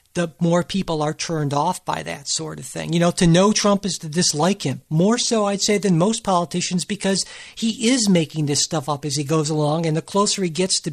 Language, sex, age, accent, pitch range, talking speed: English, male, 50-69, American, 155-195 Hz, 240 wpm